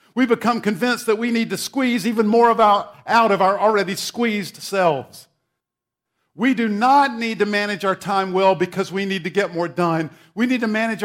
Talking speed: 195 wpm